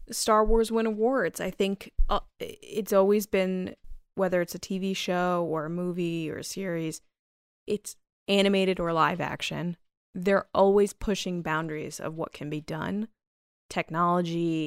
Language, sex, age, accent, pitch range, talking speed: English, female, 20-39, American, 160-190 Hz, 145 wpm